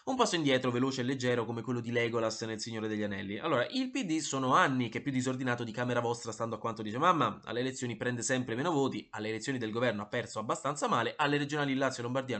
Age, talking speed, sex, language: 20-39, 245 wpm, male, Italian